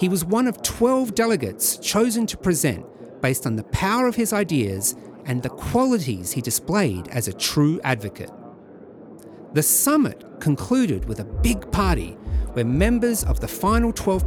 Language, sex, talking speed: English, male, 160 wpm